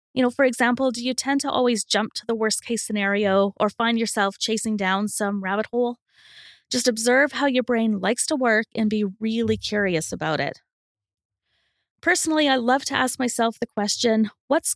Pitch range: 205-265 Hz